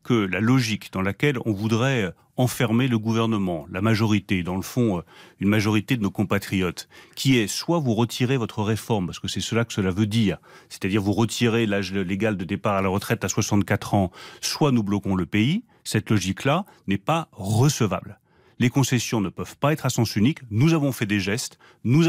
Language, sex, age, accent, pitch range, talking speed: French, male, 30-49, French, 105-130 Hz, 200 wpm